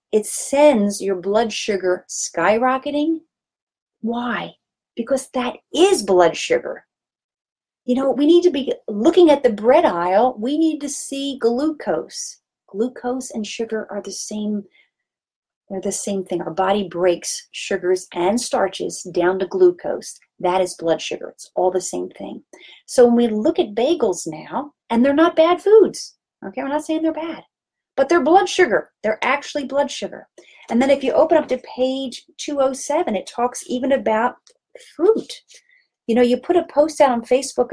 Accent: American